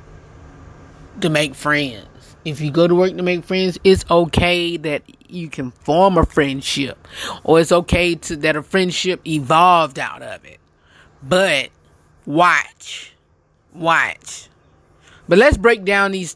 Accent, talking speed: American, 140 wpm